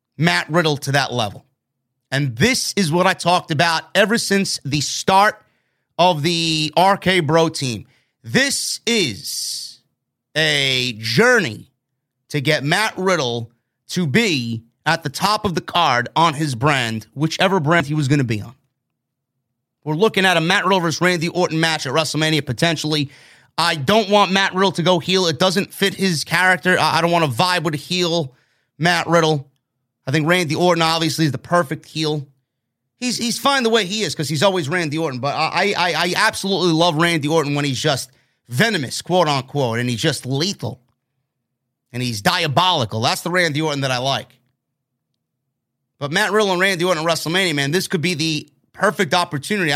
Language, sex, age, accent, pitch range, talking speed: English, male, 30-49, American, 135-180 Hz, 175 wpm